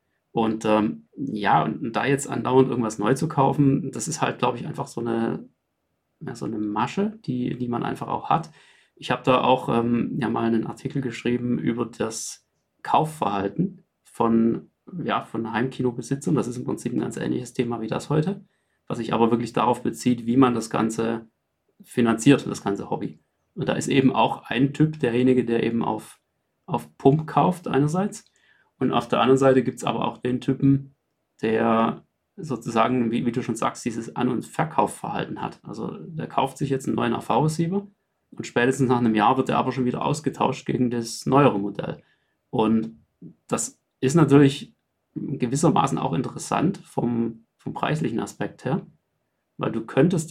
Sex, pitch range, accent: male, 115-140 Hz, German